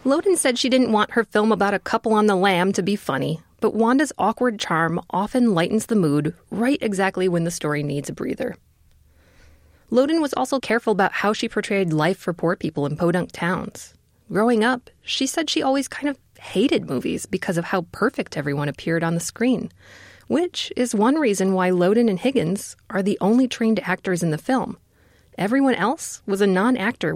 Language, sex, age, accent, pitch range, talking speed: English, female, 20-39, American, 170-245 Hz, 190 wpm